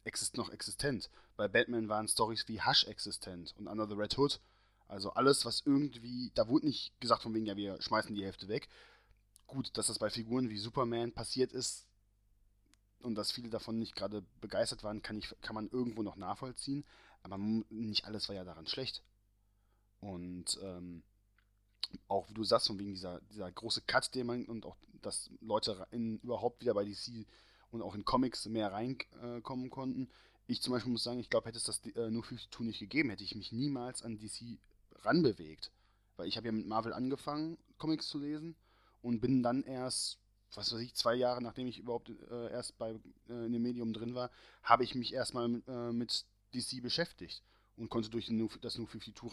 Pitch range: 100-125 Hz